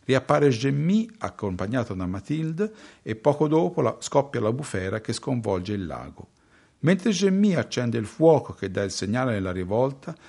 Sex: male